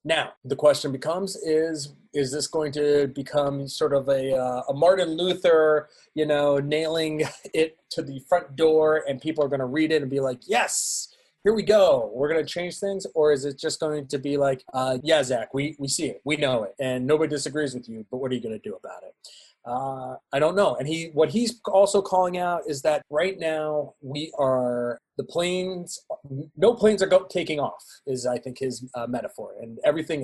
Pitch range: 135-165 Hz